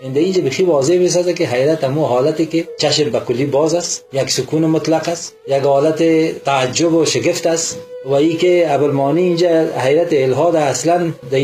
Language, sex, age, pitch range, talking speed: Persian, male, 40-59, 125-165 Hz, 170 wpm